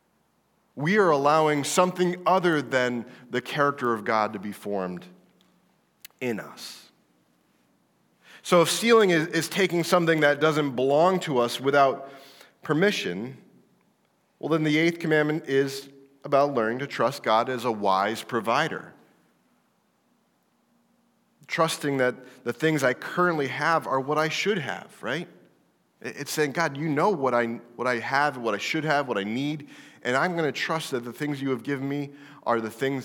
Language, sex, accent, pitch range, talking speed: English, male, American, 125-180 Hz, 160 wpm